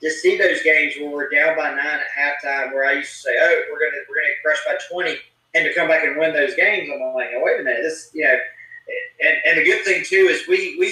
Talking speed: 280 wpm